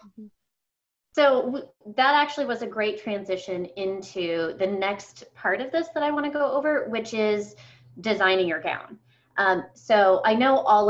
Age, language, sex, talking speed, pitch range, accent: 20-39, English, female, 160 wpm, 180-235 Hz, American